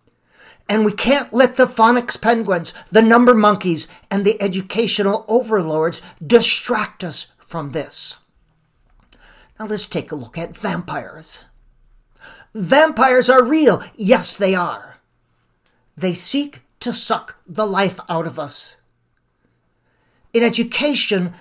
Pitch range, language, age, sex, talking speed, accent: 180-235 Hz, English, 50-69, male, 120 wpm, American